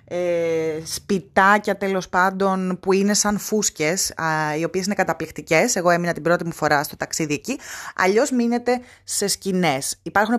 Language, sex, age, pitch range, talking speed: Greek, female, 20-39, 160-210 Hz, 155 wpm